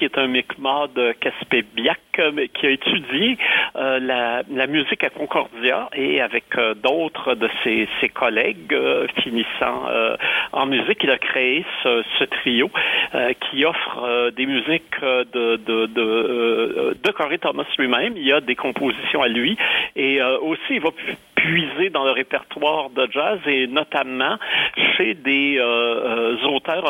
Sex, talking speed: male, 160 wpm